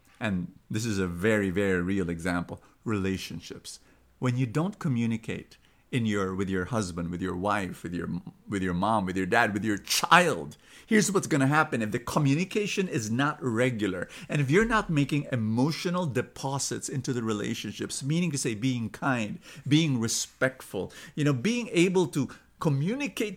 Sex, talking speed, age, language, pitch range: male, 170 wpm, 50-69, English, 110-180 Hz